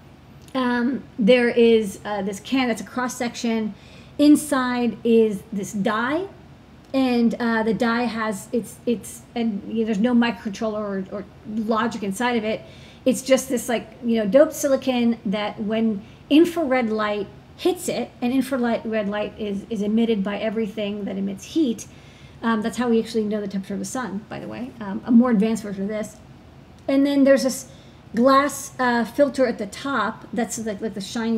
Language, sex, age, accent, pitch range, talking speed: English, female, 40-59, American, 210-250 Hz, 180 wpm